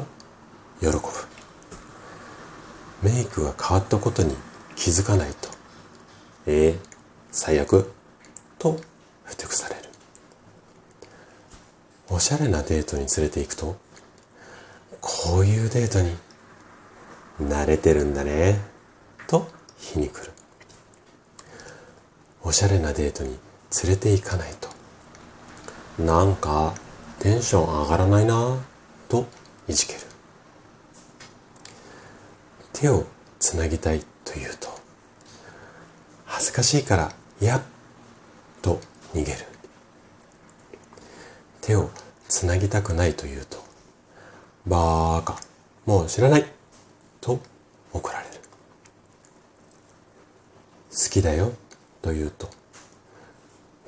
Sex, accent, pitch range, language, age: male, native, 75-100 Hz, Japanese, 40-59